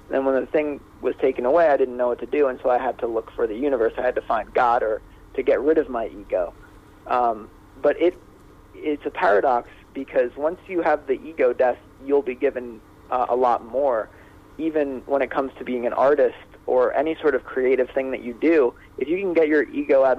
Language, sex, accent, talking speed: English, male, American, 230 wpm